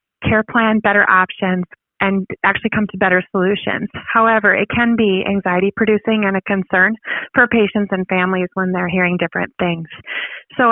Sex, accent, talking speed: female, American, 155 wpm